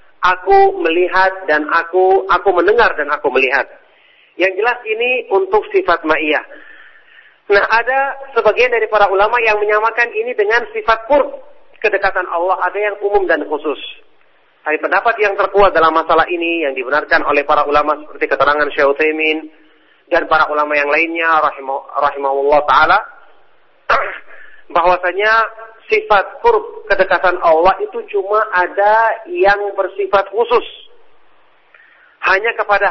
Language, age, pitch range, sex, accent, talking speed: English, 40-59, 170-240 Hz, male, Indonesian, 125 wpm